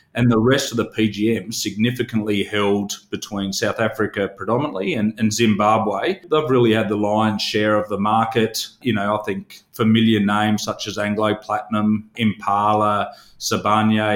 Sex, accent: male, Australian